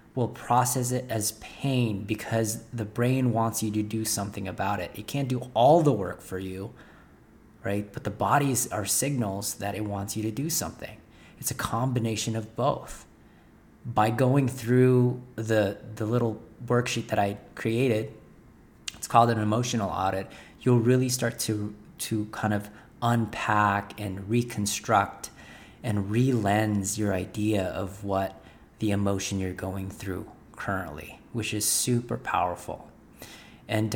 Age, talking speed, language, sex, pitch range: 30-49, 145 wpm, English, male, 105-125 Hz